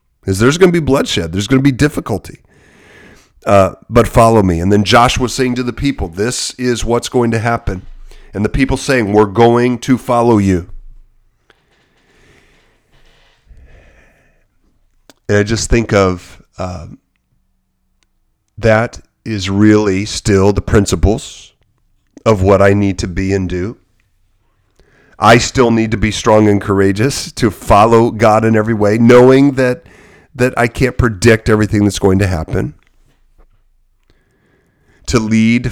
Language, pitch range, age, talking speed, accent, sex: English, 100-120 Hz, 40-59, 140 wpm, American, male